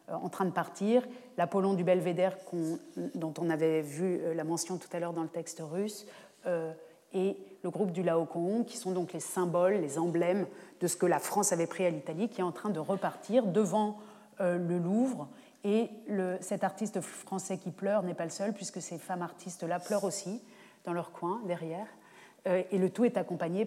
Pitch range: 175-210 Hz